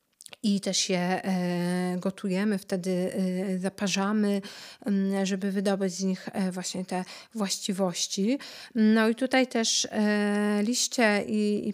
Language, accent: Polish, native